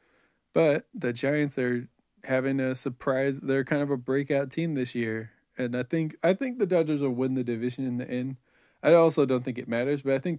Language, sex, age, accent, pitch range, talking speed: English, male, 20-39, American, 120-145 Hz, 220 wpm